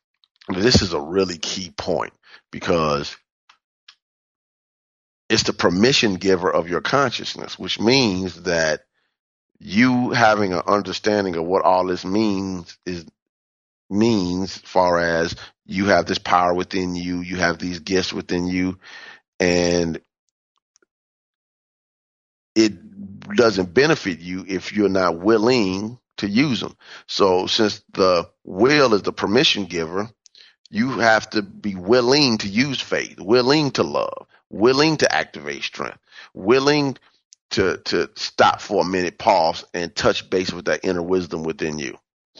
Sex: male